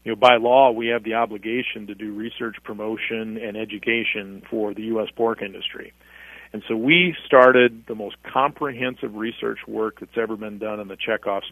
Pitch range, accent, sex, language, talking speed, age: 105-120 Hz, American, male, English, 180 wpm, 40-59